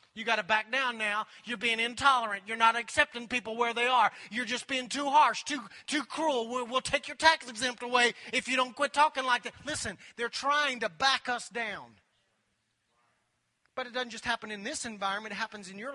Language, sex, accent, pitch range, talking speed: English, male, American, 225-270 Hz, 215 wpm